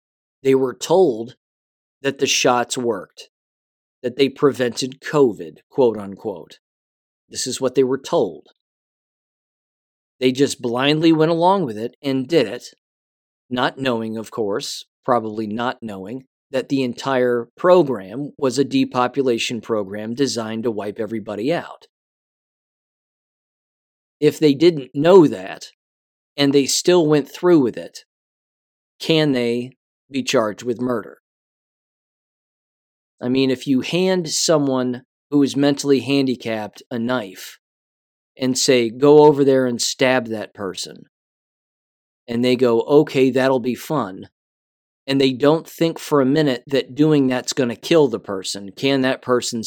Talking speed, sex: 135 wpm, male